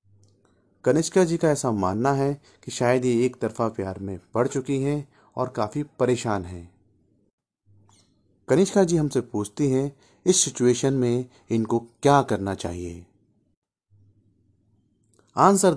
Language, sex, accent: Hindi, male, native